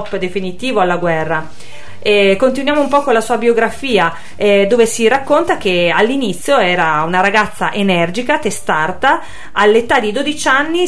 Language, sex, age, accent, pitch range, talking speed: Italian, female, 30-49, native, 185-235 Hz, 145 wpm